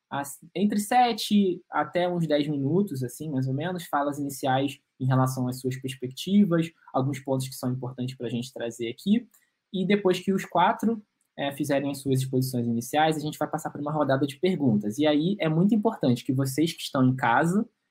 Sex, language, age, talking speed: male, Portuguese, 20-39, 195 wpm